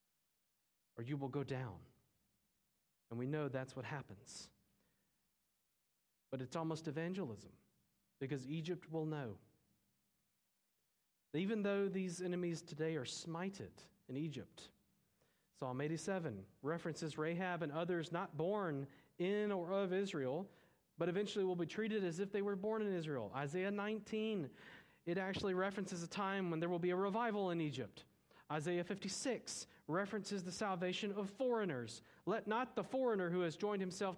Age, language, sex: 40-59, English, male